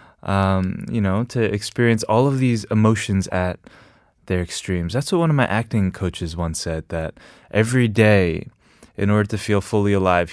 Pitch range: 95-130 Hz